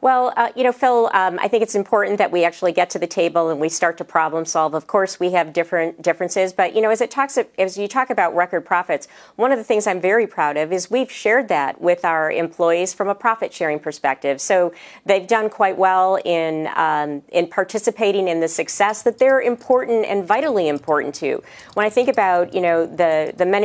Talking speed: 225 wpm